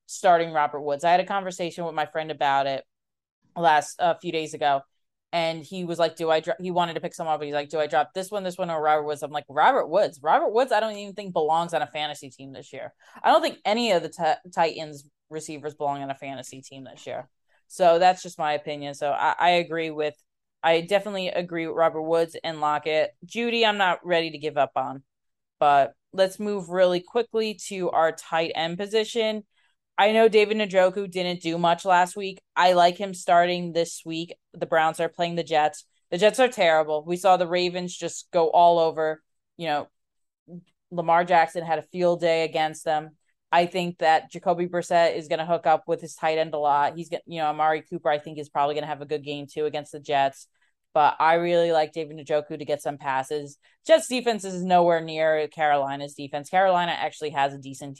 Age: 20-39